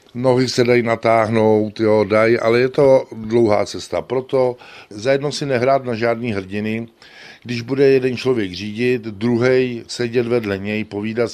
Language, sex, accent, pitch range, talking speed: Czech, male, native, 110-125 Hz, 150 wpm